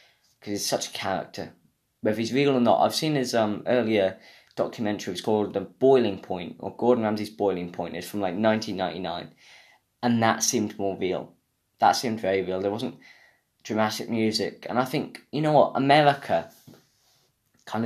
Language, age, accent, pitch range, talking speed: English, 10-29, British, 100-120 Hz, 170 wpm